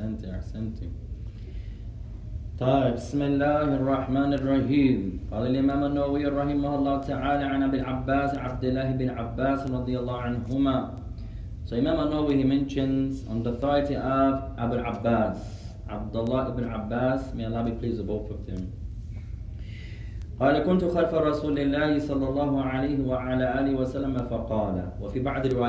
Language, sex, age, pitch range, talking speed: English, male, 30-49, 105-135 Hz, 110 wpm